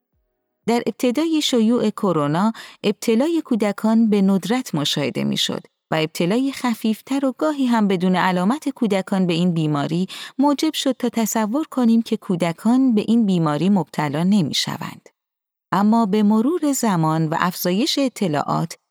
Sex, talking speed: female, 135 wpm